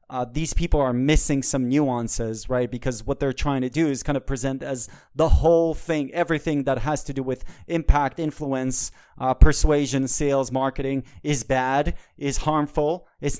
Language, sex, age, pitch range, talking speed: English, male, 30-49, 130-155 Hz, 175 wpm